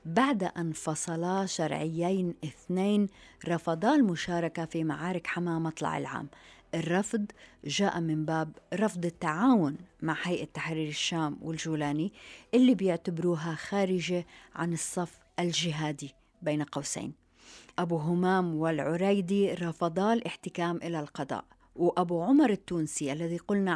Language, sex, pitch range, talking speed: Arabic, female, 160-195 Hz, 110 wpm